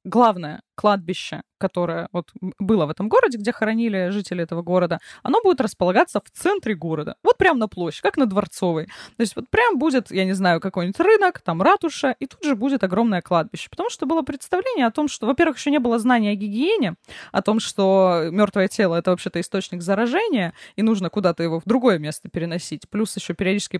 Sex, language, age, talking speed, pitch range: female, Russian, 20-39, 195 wpm, 180-260 Hz